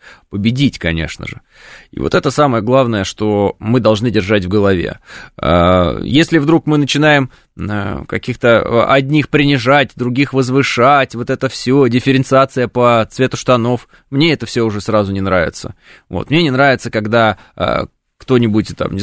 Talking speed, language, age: 140 wpm, Russian, 20-39